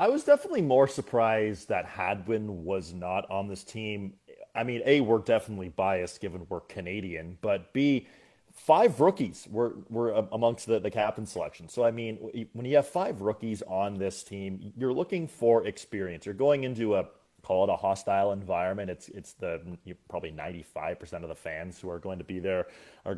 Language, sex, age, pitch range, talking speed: English, male, 30-49, 95-130 Hz, 190 wpm